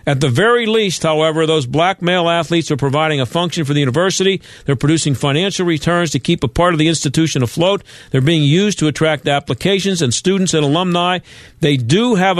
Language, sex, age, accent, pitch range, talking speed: English, male, 50-69, American, 135-175 Hz, 200 wpm